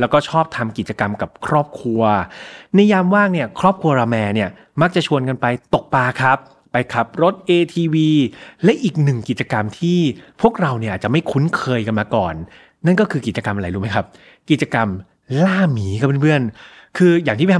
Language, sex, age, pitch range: Thai, male, 20-39, 115-165 Hz